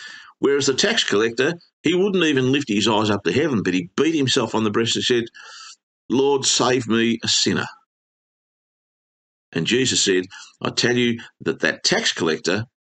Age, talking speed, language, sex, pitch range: 50-69, 175 wpm, English, male, 110-180 Hz